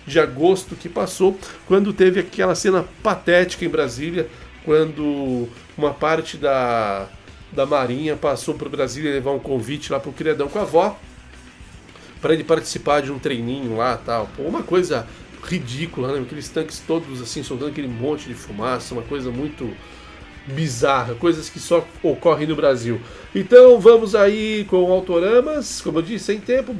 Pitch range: 145-190 Hz